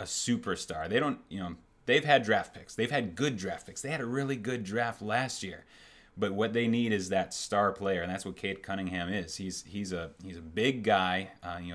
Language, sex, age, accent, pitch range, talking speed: English, male, 30-49, American, 90-105 Hz, 235 wpm